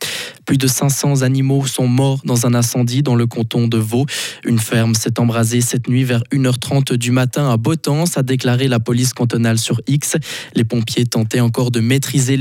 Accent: French